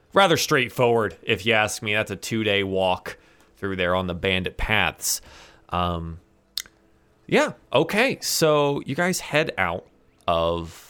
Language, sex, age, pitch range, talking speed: English, male, 30-49, 95-125 Hz, 140 wpm